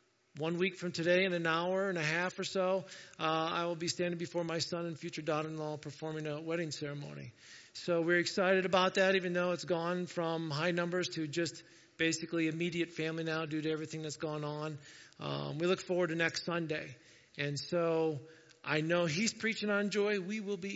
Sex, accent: male, American